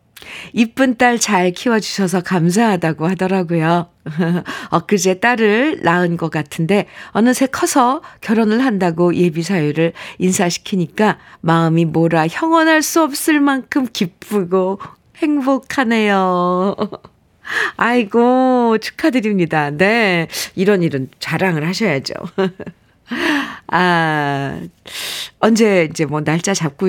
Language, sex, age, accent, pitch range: Korean, female, 50-69, native, 165-225 Hz